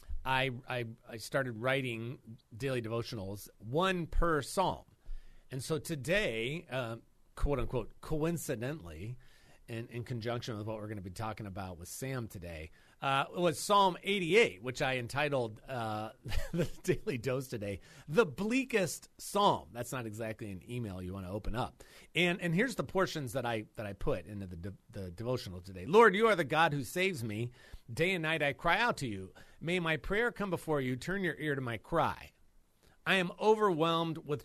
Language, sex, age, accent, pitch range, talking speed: English, male, 40-59, American, 115-160 Hz, 180 wpm